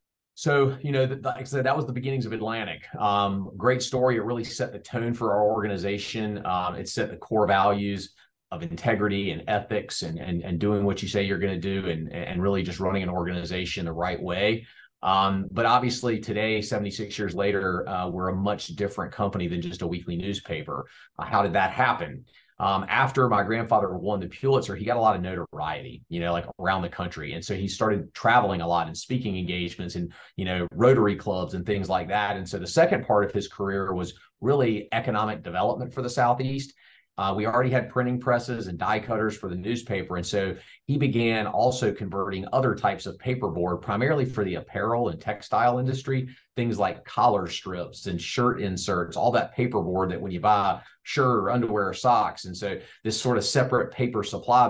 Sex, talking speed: male, 205 wpm